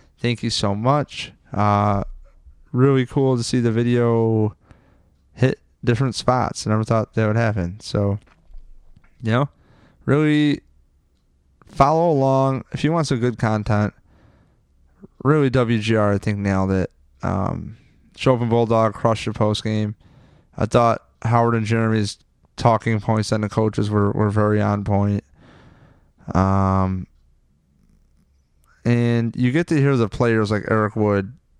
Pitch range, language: 100-115 Hz, English